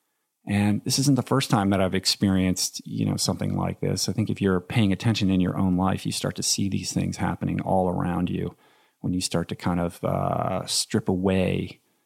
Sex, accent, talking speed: male, American, 215 wpm